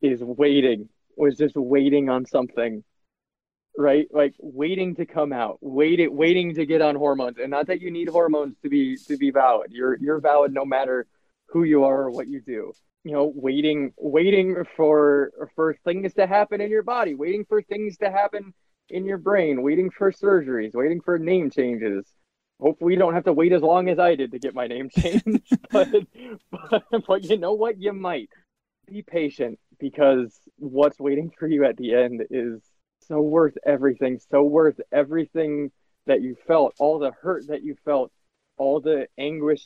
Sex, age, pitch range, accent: male, 20-39, 140-185 Hz, American